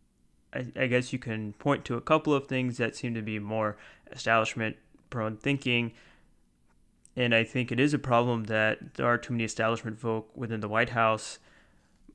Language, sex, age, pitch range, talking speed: English, male, 20-39, 110-125 Hz, 175 wpm